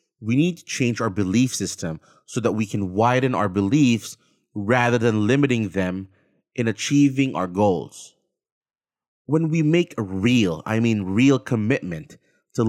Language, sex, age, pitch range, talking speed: English, male, 30-49, 105-135 Hz, 150 wpm